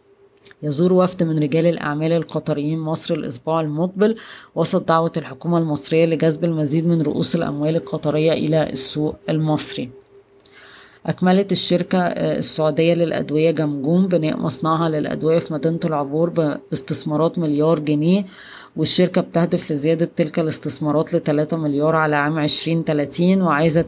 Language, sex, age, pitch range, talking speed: Arabic, female, 20-39, 150-170 Hz, 120 wpm